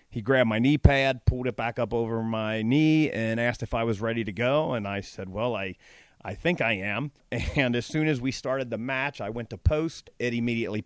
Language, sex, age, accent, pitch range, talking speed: English, male, 40-59, American, 115-140 Hz, 240 wpm